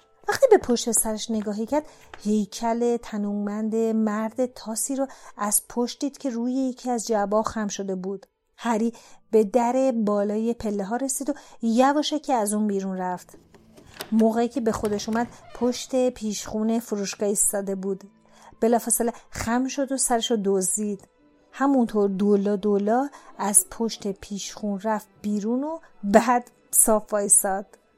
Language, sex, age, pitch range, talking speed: Persian, female, 40-59, 215-270 Hz, 140 wpm